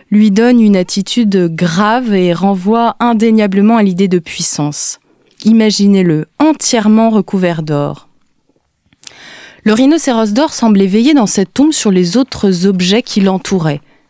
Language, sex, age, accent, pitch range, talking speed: French, female, 20-39, French, 180-230 Hz, 130 wpm